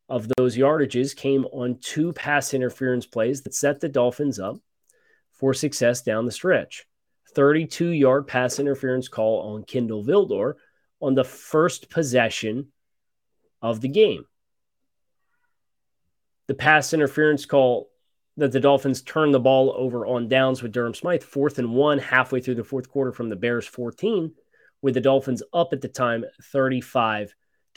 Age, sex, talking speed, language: 30-49, male, 150 wpm, English